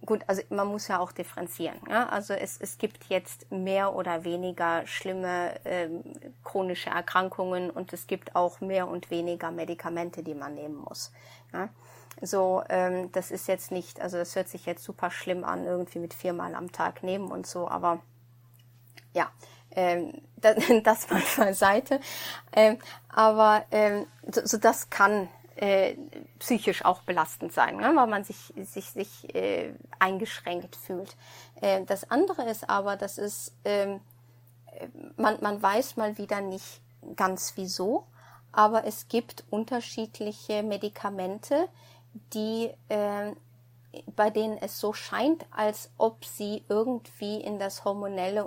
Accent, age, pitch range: German, 30-49, 175-210 Hz